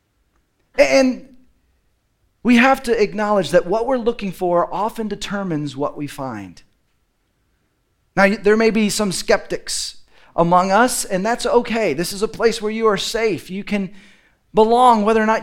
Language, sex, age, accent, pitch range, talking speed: English, male, 40-59, American, 190-245 Hz, 155 wpm